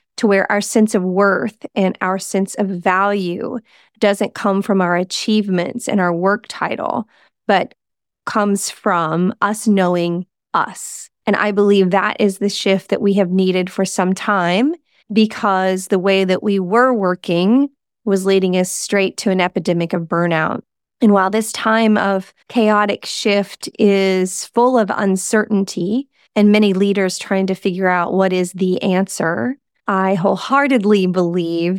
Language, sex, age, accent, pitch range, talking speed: English, female, 30-49, American, 185-210 Hz, 155 wpm